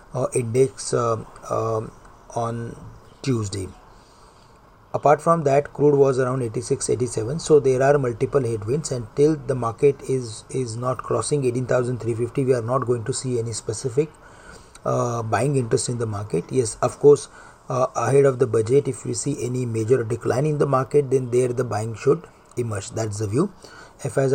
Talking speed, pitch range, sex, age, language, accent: 165 wpm, 120-140 Hz, male, 40-59, English, Indian